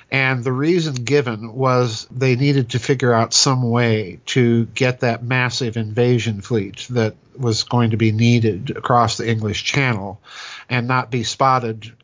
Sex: male